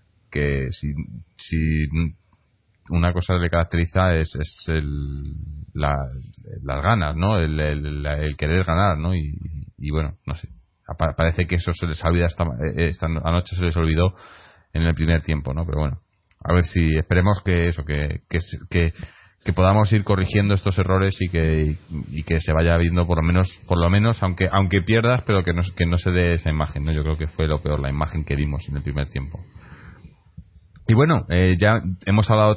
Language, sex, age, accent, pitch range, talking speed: Spanish, male, 30-49, Spanish, 80-100 Hz, 195 wpm